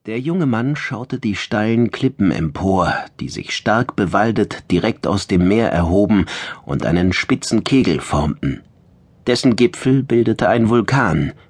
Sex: male